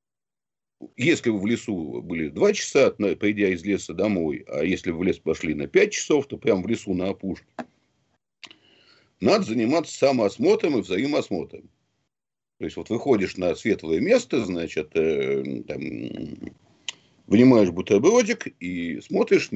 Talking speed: 135 wpm